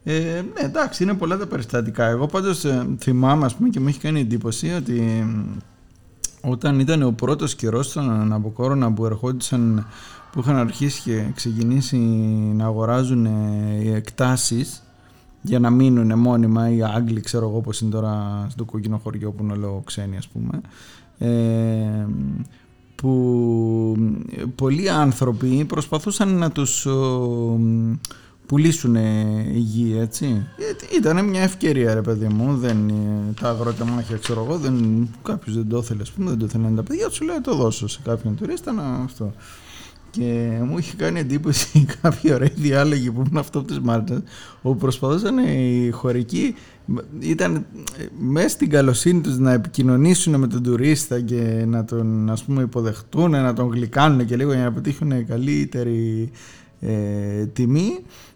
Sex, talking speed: male, 145 wpm